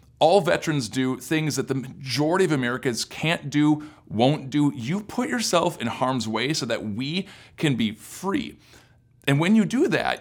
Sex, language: male, English